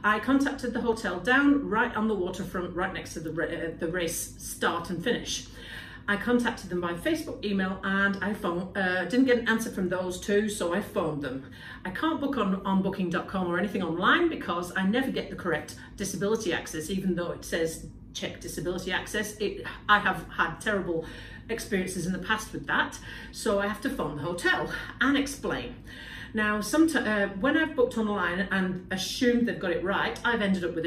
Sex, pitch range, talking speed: female, 175-240 Hz, 190 wpm